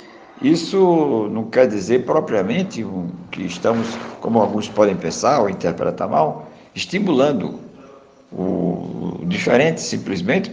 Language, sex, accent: Portuguese, male, Brazilian